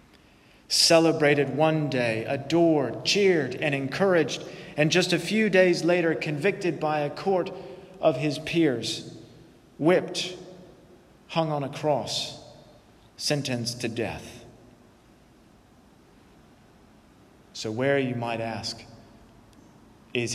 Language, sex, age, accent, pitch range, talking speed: English, male, 40-59, American, 120-165 Hz, 100 wpm